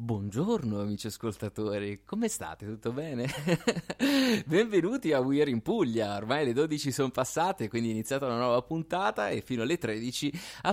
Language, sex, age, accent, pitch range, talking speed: Italian, male, 20-39, native, 110-145 Hz, 155 wpm